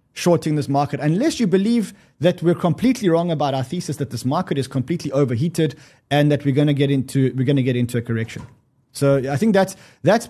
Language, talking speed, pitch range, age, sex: English, 220 wpm, 135-175 Hz, 20-39, male